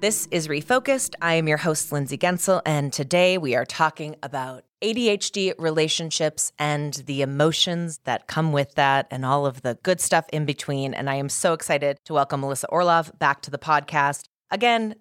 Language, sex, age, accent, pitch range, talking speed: English, female, 30-49, American, 140-170 Hz, 185 wpm